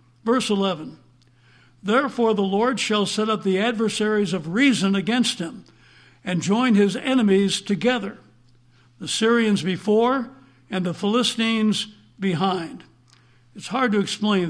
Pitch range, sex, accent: 175-220 Hz, male, American